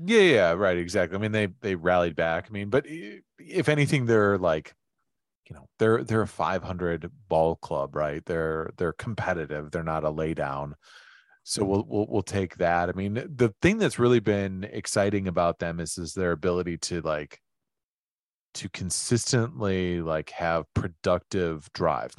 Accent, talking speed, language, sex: American, 170 wpm, English, male